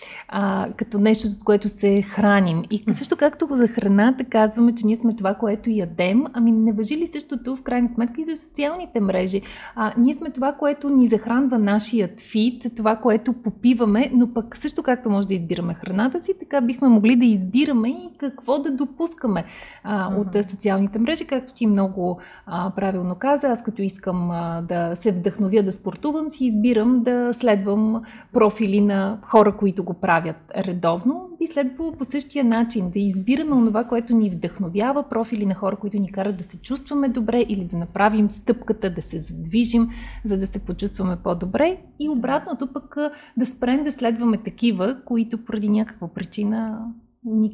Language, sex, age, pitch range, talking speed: Bulgarian, female, 30-49, 200-250 Hz, 170 wpm